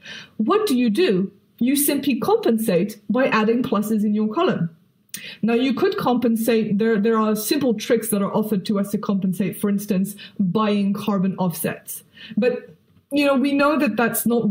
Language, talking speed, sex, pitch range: Dutch, 175 wpm, female, 205-245 Hz